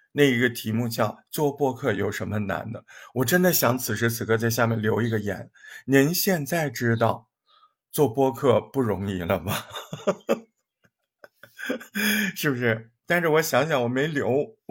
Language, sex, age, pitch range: Chinese, male, 50-69, 115-185 Hz